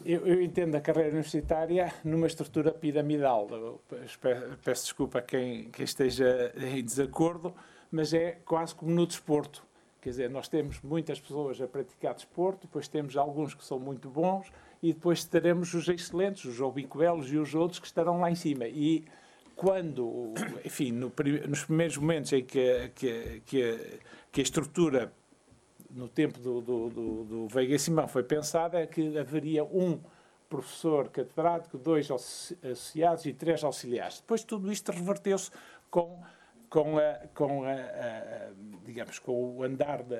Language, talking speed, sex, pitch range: Portuguese, 160 wpm, male, 135-170 Hz